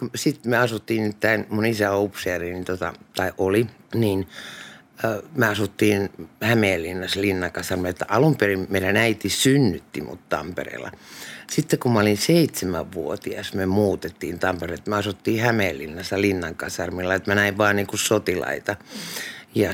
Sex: male